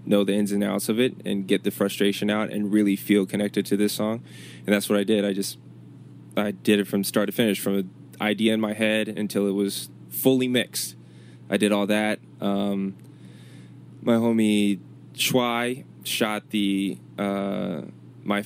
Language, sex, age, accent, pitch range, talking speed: English, male, 20-39, American, 95-105 Hz, 180 wpm